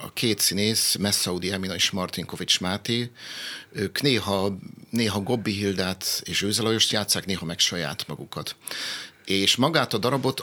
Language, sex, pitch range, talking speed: Hungarian, male, 95-110 Hz, 140 wpm